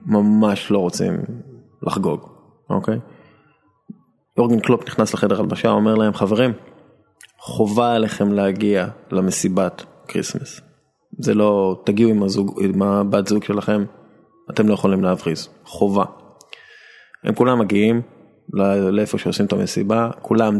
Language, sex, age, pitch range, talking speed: Hebrew, male, 20-39, 100-125 Hz, 115 wpm